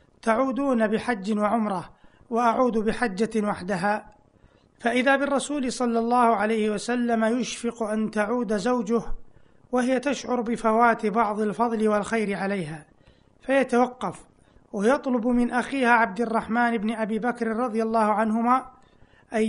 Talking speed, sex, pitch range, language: 110 wpm, male, 215-245 Hz, Arabic